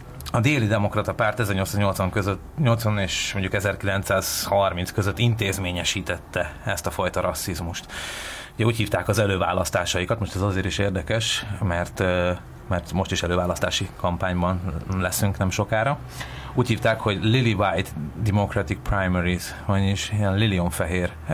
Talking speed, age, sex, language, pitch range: 125 wpm, 30-49, male, Hungarian, 90-110 Hz